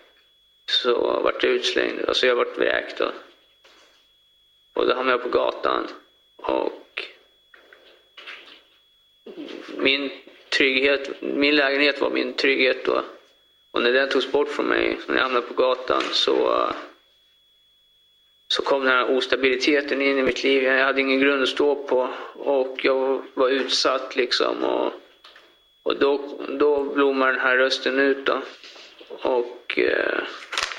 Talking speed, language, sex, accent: 135 wpm, Swedish, male, native